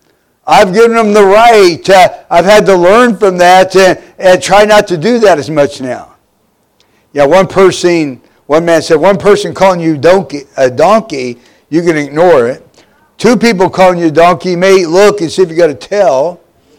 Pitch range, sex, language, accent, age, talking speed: 165-205 Hz, male, English, American, 60-79, 195 wpm